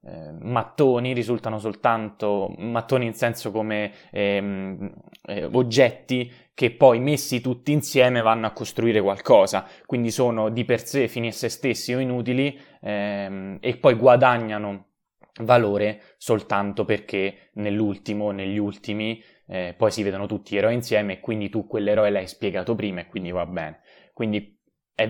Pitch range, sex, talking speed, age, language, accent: 100-120 Hz, male, 145 wpm, 20-39, Italian, native